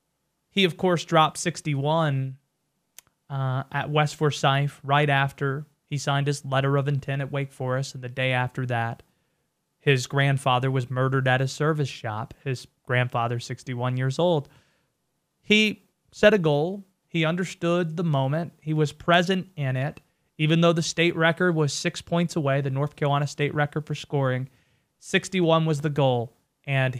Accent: American